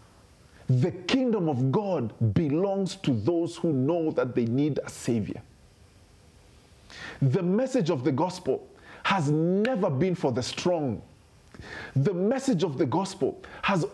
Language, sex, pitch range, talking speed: English, male, 150-215 Hz, 135 wpm